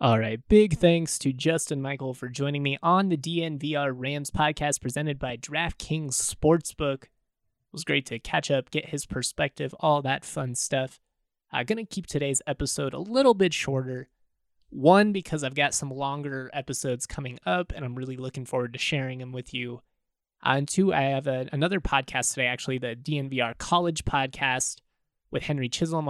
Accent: American